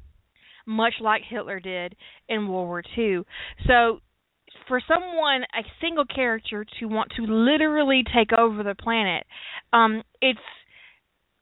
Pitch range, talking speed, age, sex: 200-245 Hz, 125 wpm, 30-49, female